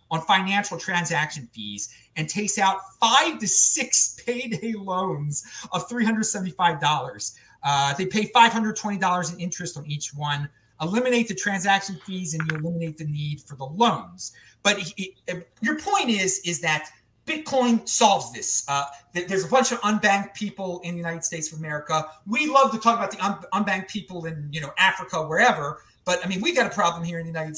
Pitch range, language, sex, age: 160-220 Hz, English, male, 30-49